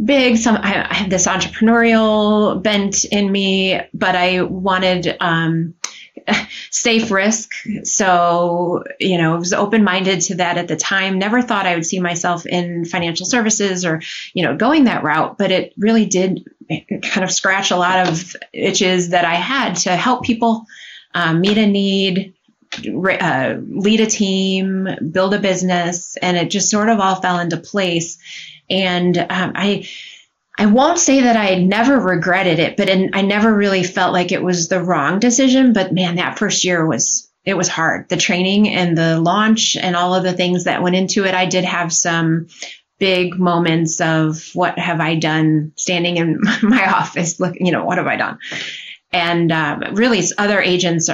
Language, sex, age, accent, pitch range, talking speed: English, female, 30-49, American, 175-205 Hz, 175 wpm